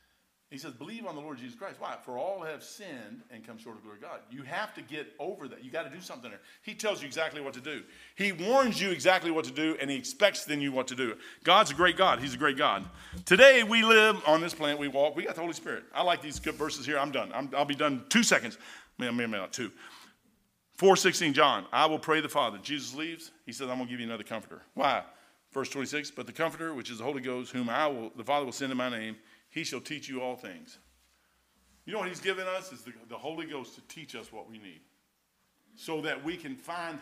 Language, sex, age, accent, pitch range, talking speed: English, male, 50-69, American, 125-180 Hz, 265 wpm